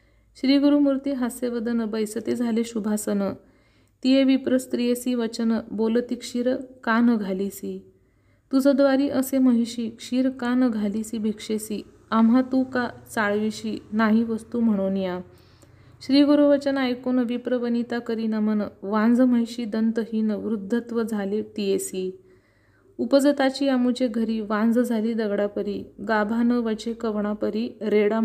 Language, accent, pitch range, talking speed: Marathi, native, 210-250 Hz, 105 wpm